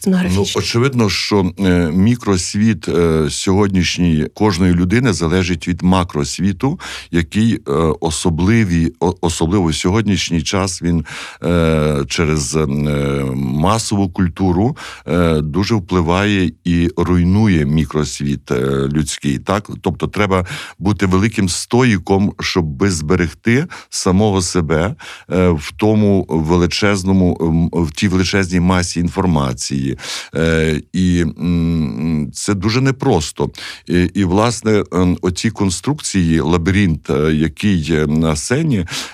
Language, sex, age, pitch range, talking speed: Ukrainian, male, 60-79, 80-100 Hz, 85 wpm